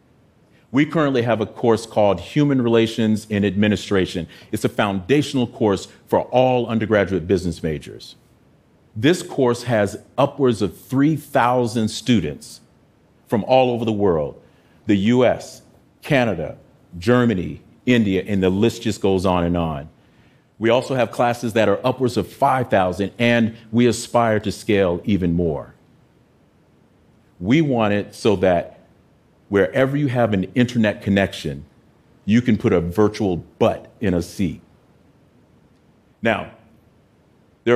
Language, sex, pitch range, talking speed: Arabic, male, 95-125 Hz, 130 wpm